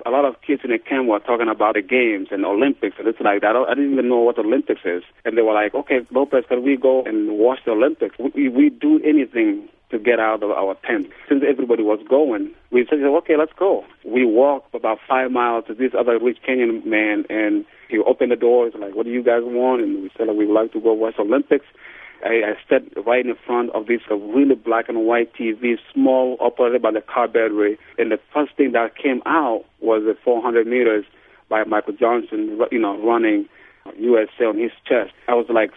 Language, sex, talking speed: English, male, 230 wpm